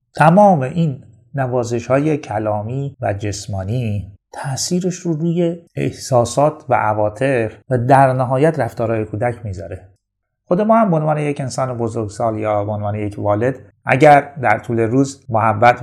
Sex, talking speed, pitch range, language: male, 135 wpm, 105-140 Hz, Persian